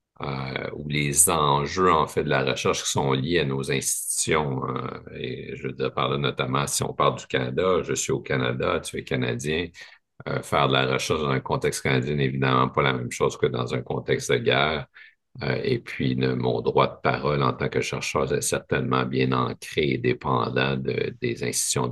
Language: French